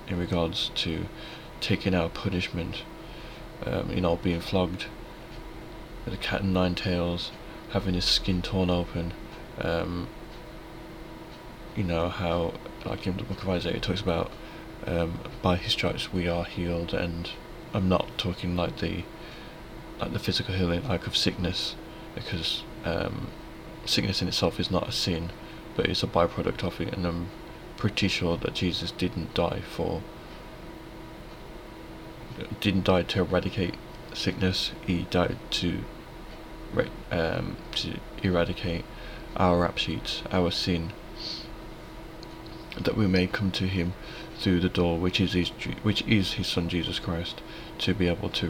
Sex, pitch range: male, 85-95 Hz